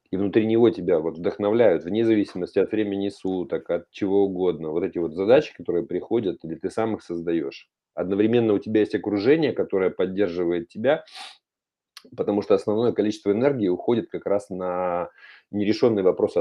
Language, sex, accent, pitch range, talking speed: Russian, male, native, 90-125 Hz, 155 wpm